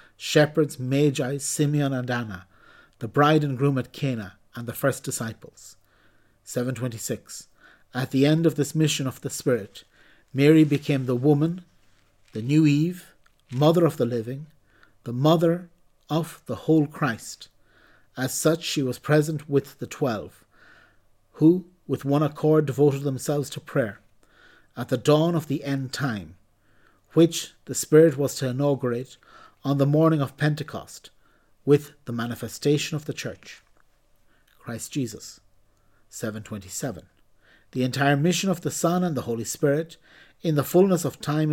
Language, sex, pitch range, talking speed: English, male, 125-155 Hz, 145 wpm